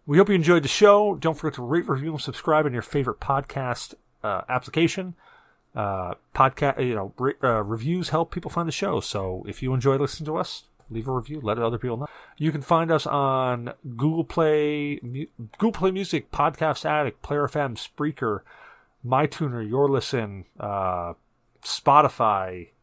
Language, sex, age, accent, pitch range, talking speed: English, male, 40-59, American, 120-160 Hz, 170 wpm